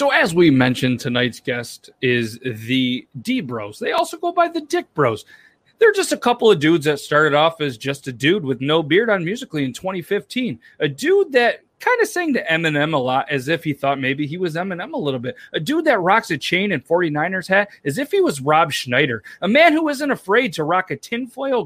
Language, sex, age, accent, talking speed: English, male, 30-49, American, 225 wpm